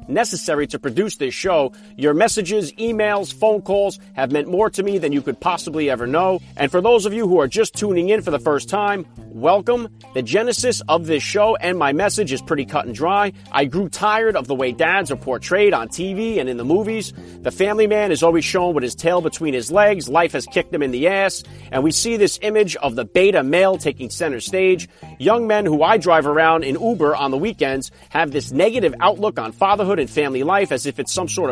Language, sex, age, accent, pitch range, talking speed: English, male, 40-59, American, 140-205 Hz, 230 wpm